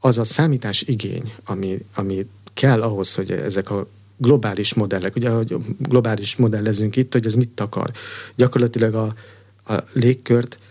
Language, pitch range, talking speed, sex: Hungarian, 100-120 Hz, 145 wpm, male